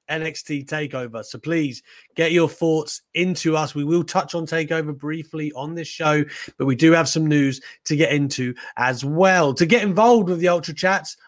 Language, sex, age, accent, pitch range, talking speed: English, male, 30-49, British, 145-195 Hz, 190 wpm